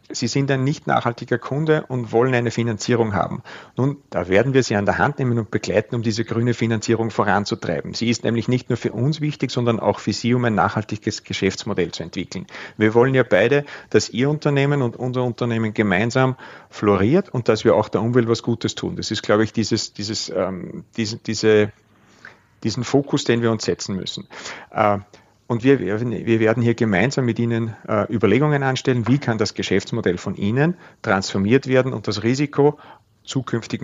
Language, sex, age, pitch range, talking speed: German, male, 40-59, 110-125 Hz, 185 wpm